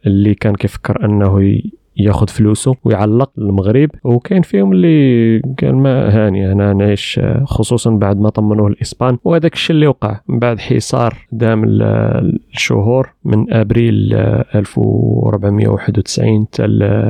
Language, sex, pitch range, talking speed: Arabic, male, 105-120 Hz, 110 wpm